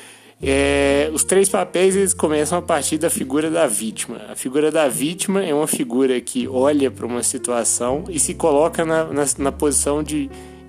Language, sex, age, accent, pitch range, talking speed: Portuguese, male, 20-39, Brazilian, 120-165 Hz, 165 wpm